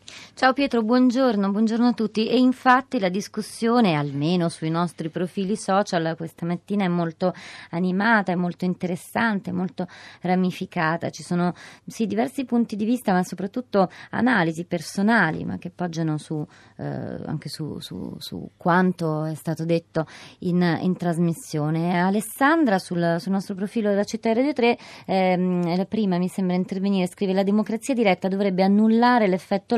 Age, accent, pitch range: 30-49, native, 170-210 Hz